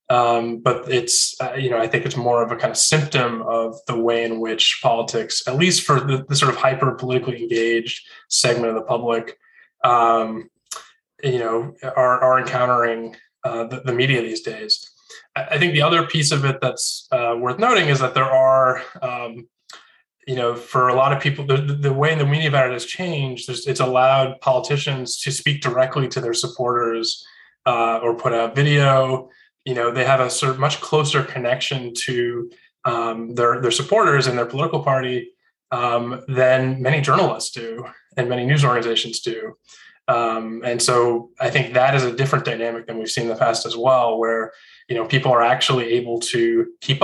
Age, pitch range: 20-39, 115-135 Hz